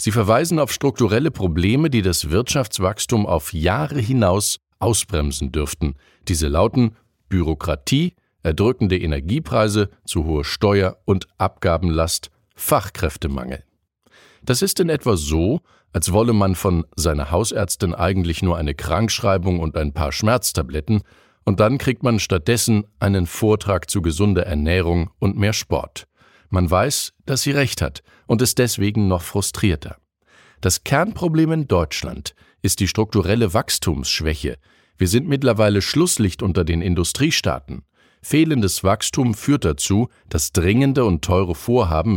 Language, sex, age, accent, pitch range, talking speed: German, male, 50-69, German, 85-115 Hz, 130 wpm